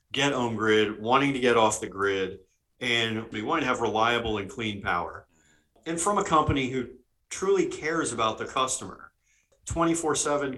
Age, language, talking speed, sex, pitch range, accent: 40-59, English, 165 wpm, male, 105-125 Hz, American